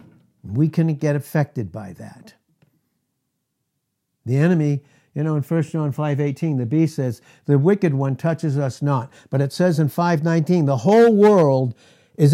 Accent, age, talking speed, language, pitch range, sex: American, 60-79, 155 wpm, English, 145-200 Hz, male